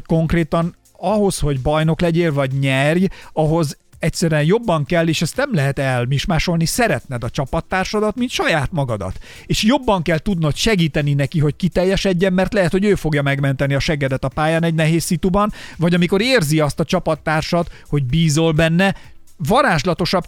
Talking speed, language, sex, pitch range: 155 wpm, Hungarian, male, 145-180 Hz